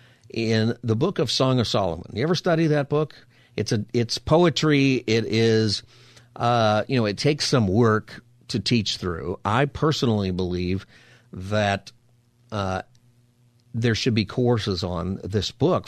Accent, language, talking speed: American, English, 150 wpm